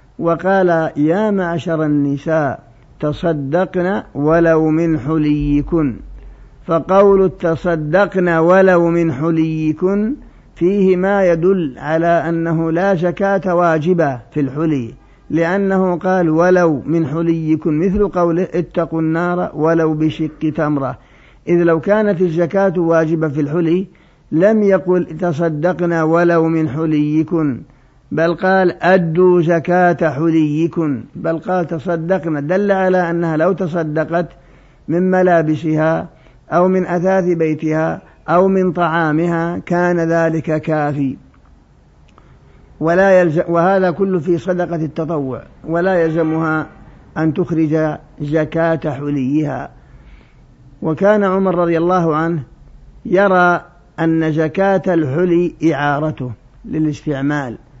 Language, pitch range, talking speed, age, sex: Arabic, 155-180 Hz, 100 wpm, 50-69, male